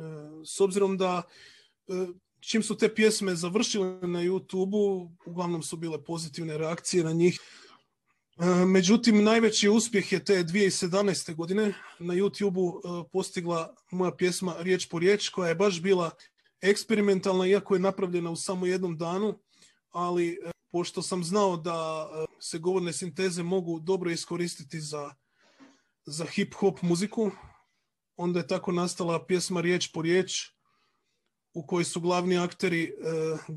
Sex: male